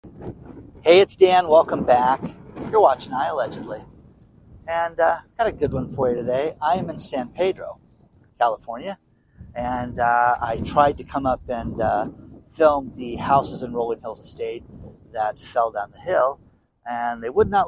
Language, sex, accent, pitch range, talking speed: English, male, American, 115-155 Hz, 170 wpm